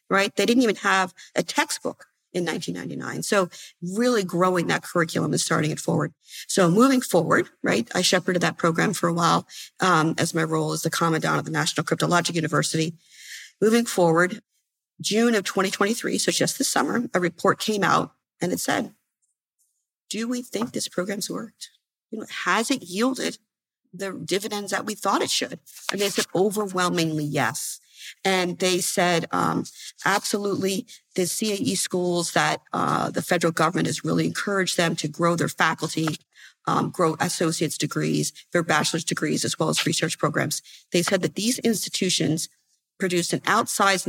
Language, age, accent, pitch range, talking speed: English, 40-59, American, 165-205 Hz, 160 wpm